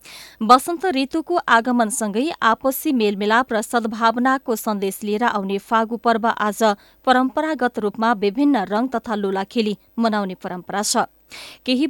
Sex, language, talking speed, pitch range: female, English, 140 wpm, 215-270 Hz